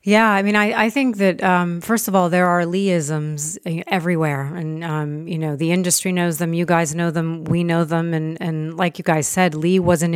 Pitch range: 155-185 Hz